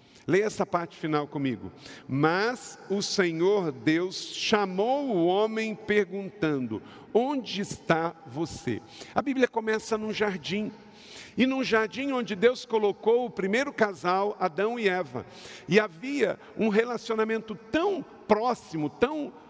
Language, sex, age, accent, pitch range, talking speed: Portuguese, male, 50-69, Brazilian, 170-230 Hz, 125 wpm